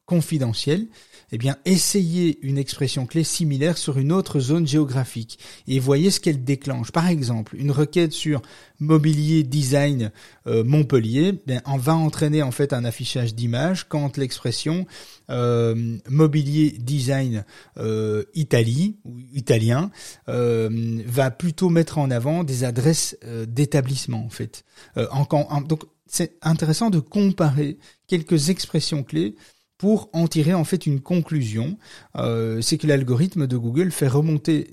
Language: French